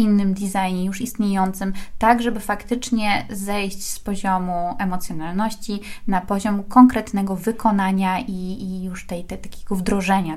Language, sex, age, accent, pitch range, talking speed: Polish, female, 20-39, native, 185-235 Hz, 125 wpm